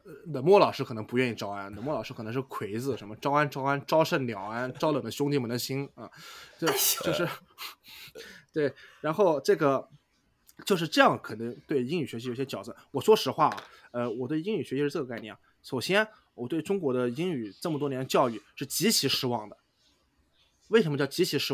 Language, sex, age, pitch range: Chinese, male, 20-39, 110-155 Hz